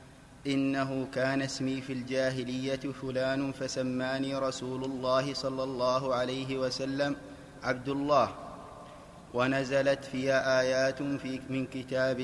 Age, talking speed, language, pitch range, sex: 30-49, 105 wpm, Arabic, 135-140 Hz, male